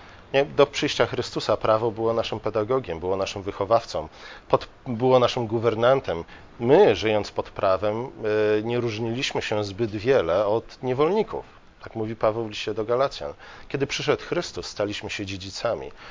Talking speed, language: 135 wpm, Polish